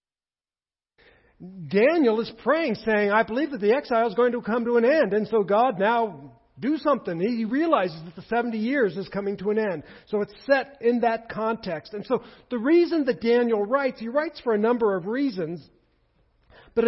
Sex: male